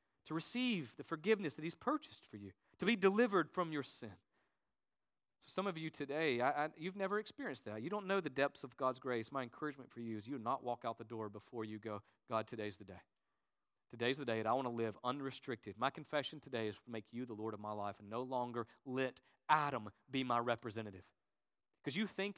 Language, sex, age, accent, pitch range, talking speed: Danish, male, 40-59, American, 115-160 Hz, 220 wpm